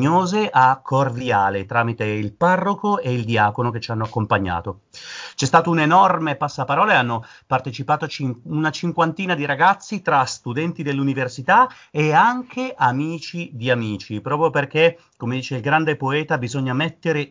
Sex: male